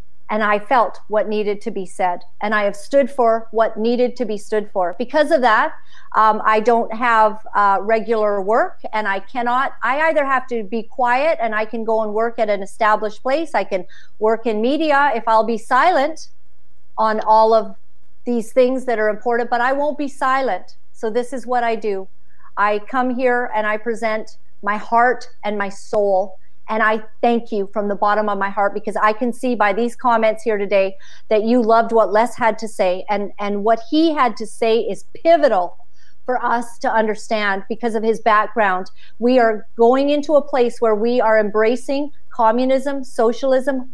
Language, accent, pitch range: English, American, 210-250 Hz